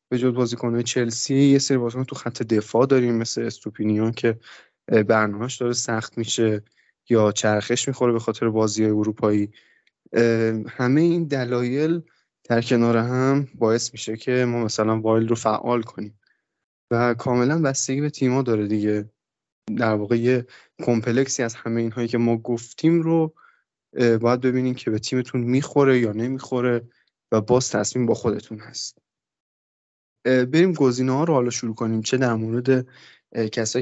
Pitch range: 110-130 Hz